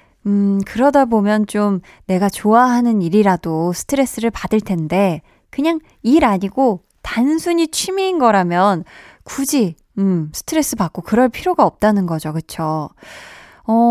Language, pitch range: Korean, 185-255 Hz